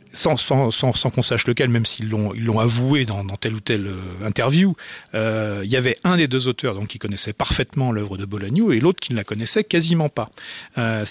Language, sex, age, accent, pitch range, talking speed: French, male, 40-59, French, 110-145 Hz, 205 wpm